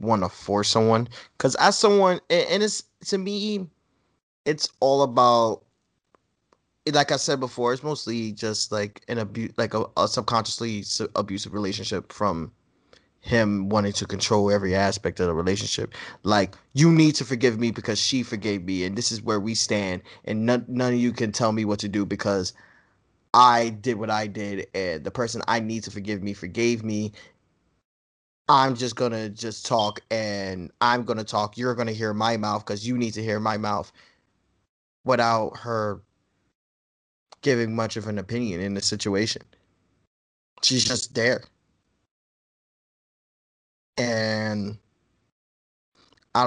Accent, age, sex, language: American, 20-39, male, English